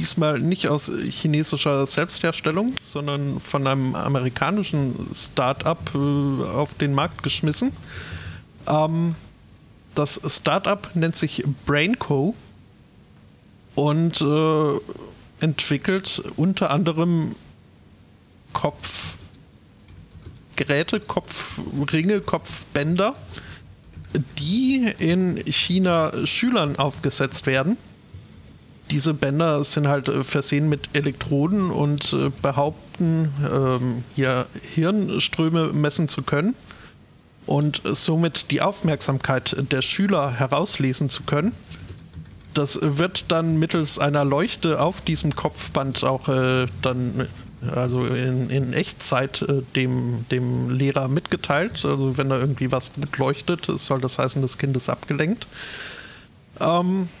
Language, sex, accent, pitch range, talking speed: German, male, German, 135-165 Hz, 100 wpm